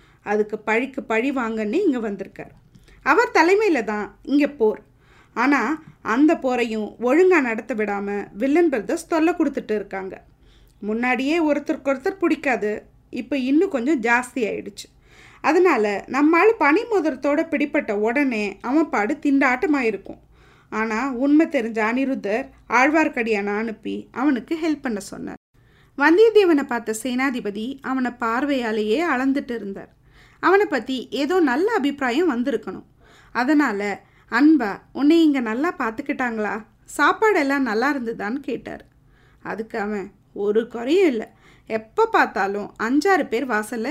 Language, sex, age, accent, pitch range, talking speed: Tamil, female, 20-39, native, 220-305 Hz, 110 wpm